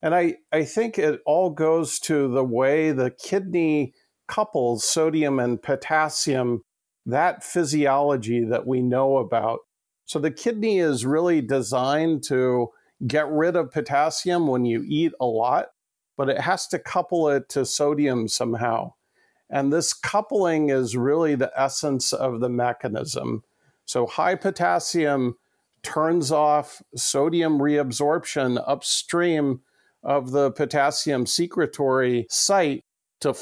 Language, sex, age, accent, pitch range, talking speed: English, male, 50-69, American, 125-155 Hz, 125 wpm